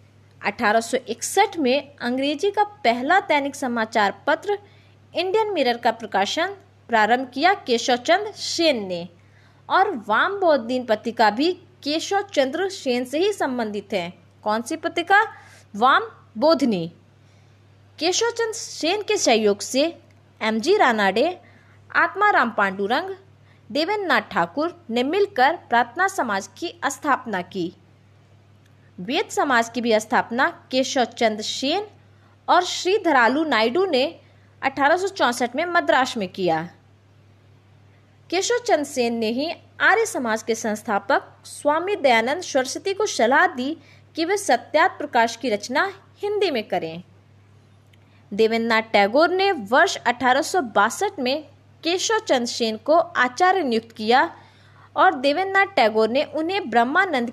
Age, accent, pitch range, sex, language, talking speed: 20-39, native, 215-345 Hz, female, Hindi, 115 wpm